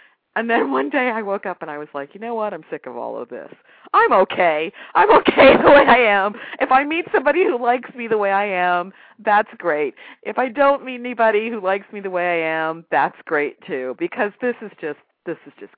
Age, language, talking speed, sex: 50-69, English, 240 wpm, female